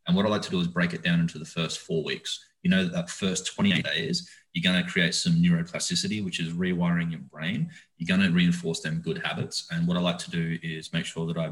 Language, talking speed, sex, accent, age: English, 260 wpm, male, Australian, 30-49